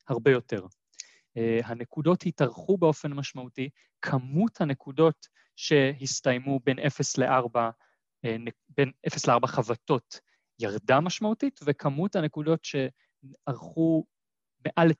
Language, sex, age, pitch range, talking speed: Hebrew, male, 20-39, 125-170 Hz, 80 wpm